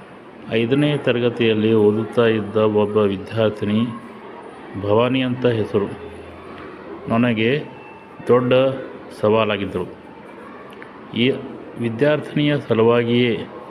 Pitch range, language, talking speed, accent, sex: 110-125 Hz, English, 55 wpm, Indian, male